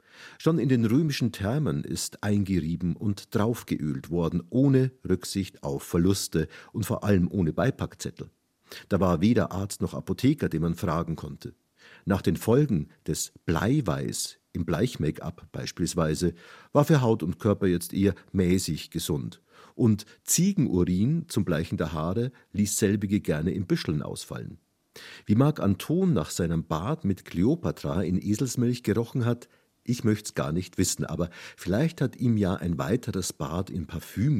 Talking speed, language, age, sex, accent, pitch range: 150 wpm, German, 50-69, male, German, 90-120 Hz